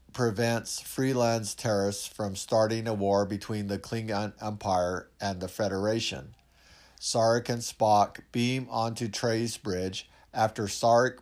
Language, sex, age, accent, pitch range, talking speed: English, male, 50-69, American, 100-120 Hz, 125 wpm